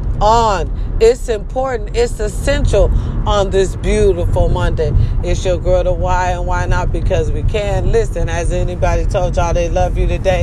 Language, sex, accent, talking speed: English, female, American, 165 wpm